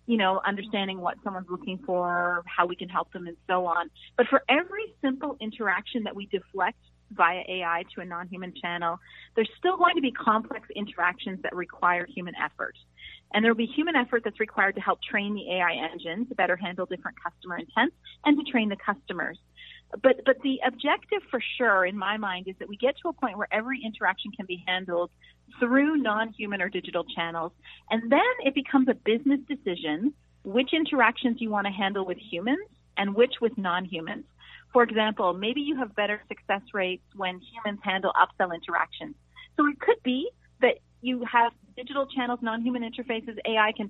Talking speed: 185 wpm